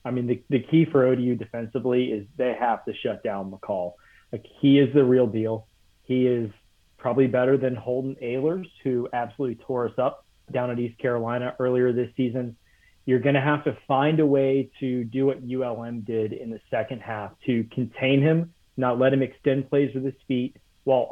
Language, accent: English, American